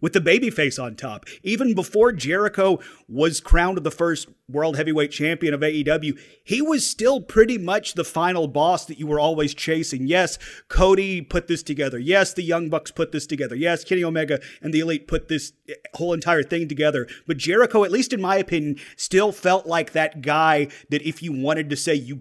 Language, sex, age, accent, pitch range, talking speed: English, male, 30-49, American, 150-180 Hz, 200 wpm